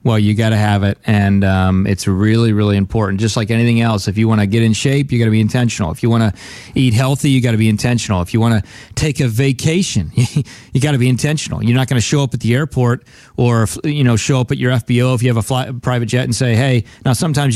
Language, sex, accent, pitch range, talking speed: English, male, American, 120-165 Hz, 275 wpm